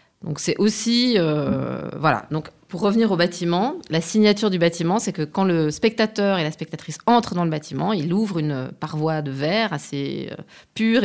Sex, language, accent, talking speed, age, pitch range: female, French, French, 185 wpm, 30-49, 150-195 Hz